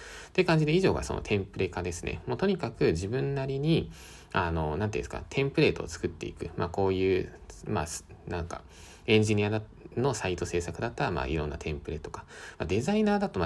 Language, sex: Japanese, male